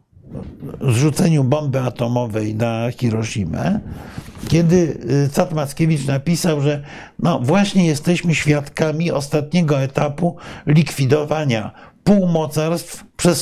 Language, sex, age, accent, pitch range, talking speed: Polish, male, 50-69, native, 130-160 Hz, 80 wpm